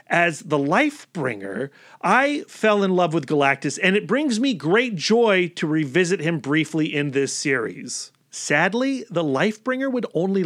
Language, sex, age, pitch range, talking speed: English, male, 30-49, 145-195 Hz, 155 wpm